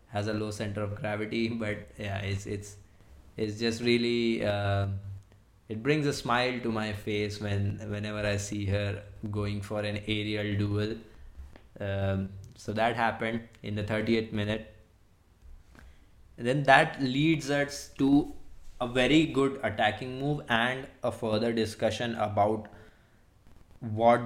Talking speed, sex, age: 135 wpm, male, 20-39